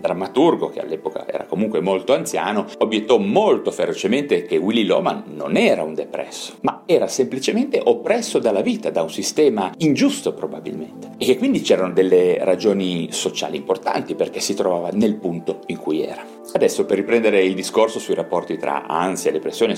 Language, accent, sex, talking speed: Italian, native, male, 165 wpm